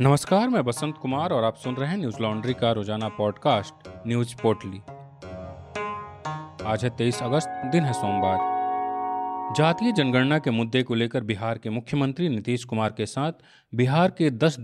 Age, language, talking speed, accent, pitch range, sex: 40-59, Hindi, 160 wpm, native, 115-155 Hz, male